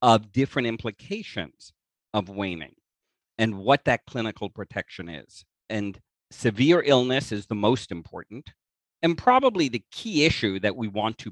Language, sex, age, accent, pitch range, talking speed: English, male, 40-59, American, 105-140 Hz, 145 wpm